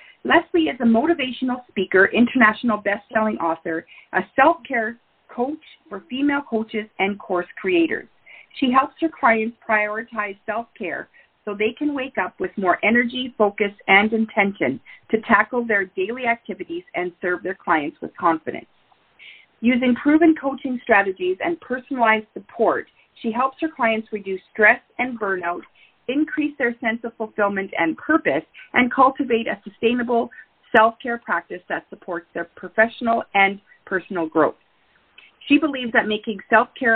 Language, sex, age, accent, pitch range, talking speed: English, female, 40-59, American, 195-255 Hz, 140 wpm